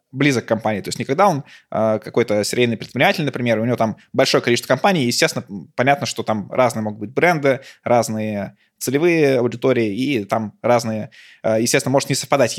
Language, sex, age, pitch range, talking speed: Russian, male, 20-39, 110-130 Hz, 175 wpm